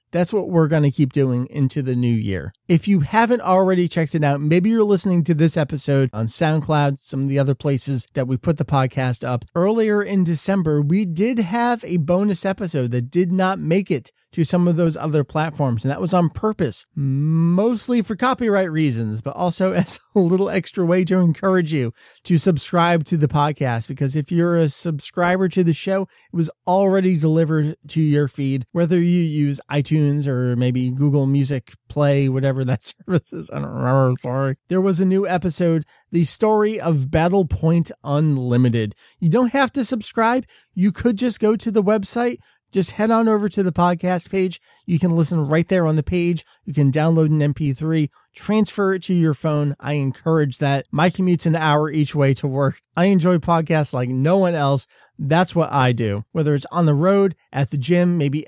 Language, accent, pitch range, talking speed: English, American, 140-185 Hz, 200 wpm